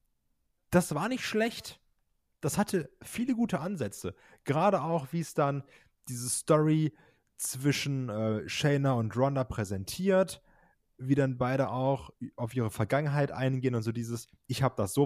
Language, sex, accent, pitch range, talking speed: German, male, German, 115-155 Hz, 150 wpm